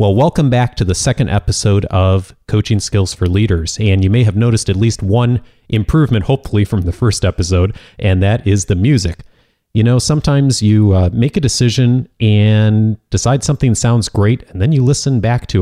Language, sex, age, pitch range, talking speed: English, male, 30-49, 95-115 Hz, 190 wpm